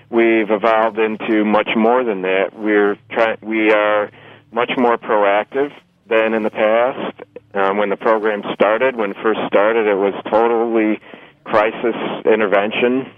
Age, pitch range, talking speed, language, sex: 40-59, 105-120 Hz, 145 wpm, English, male